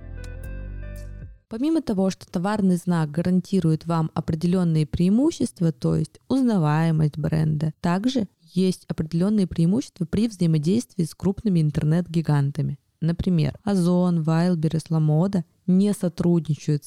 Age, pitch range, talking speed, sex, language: 20-39, 150-185 Hz, 100 wpm, female, Russian